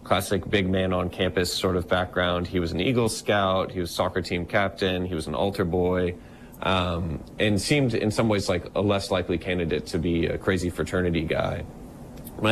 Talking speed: 195 wpm